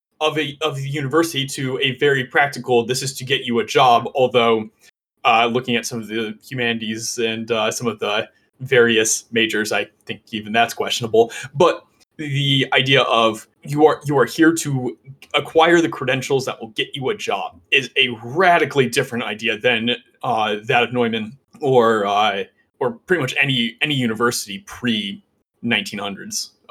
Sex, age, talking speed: male, 20-39, 165 wpm